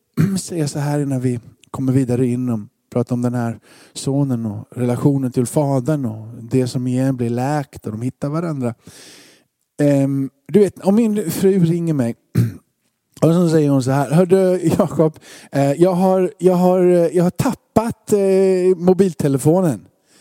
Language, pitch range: Swedish, 130-185 Hz